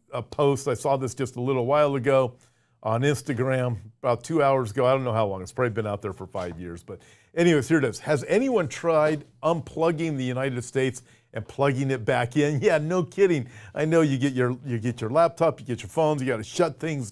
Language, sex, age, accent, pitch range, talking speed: English, male, 50-69, American, 120-145 Hz, 230 wpm